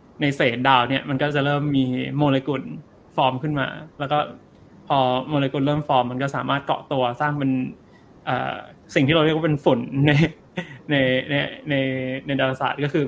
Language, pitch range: Thai, 130-150 Hz